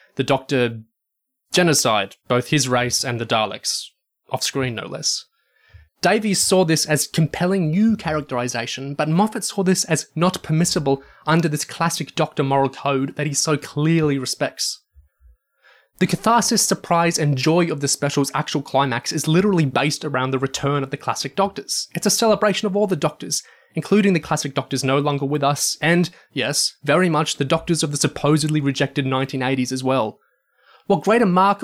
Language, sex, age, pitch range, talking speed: English, male, 20-39, 140-185 Hz, 170 wpm